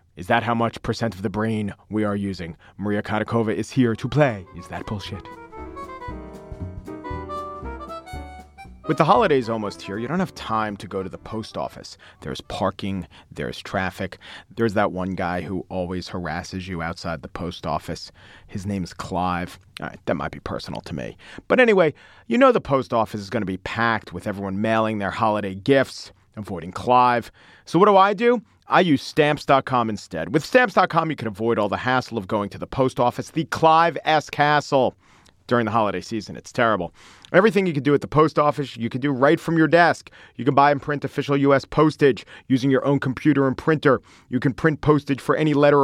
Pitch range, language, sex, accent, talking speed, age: 100-145 Hz, English, male, American, 200 wpm, 40-59